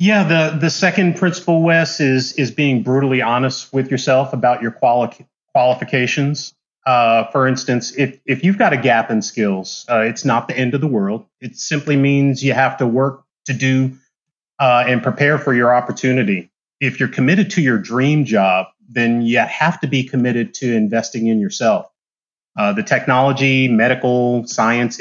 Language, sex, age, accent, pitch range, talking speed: English, male, 30-49, American, 115-145 Hz, 175 wpm